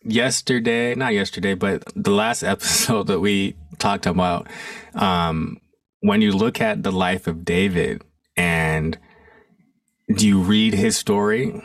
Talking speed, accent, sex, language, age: 135 wpm, American, male, English, 20-39